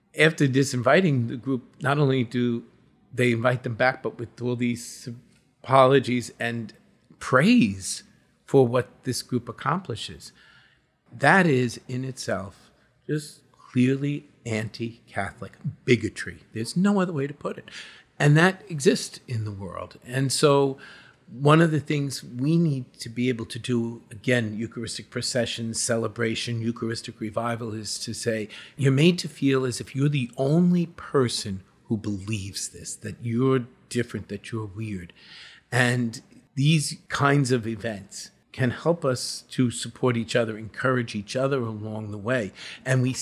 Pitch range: 115-135 Hz